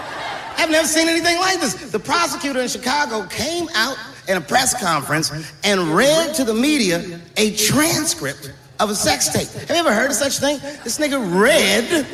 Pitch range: 150-250 Hz